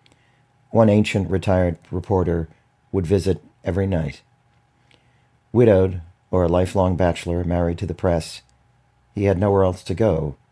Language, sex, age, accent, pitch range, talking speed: English, male, 40-59, American, 80-115 Hz, 130 wpm